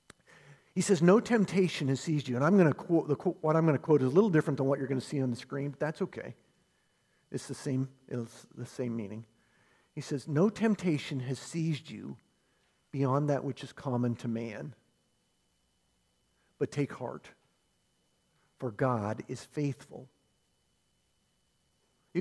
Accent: American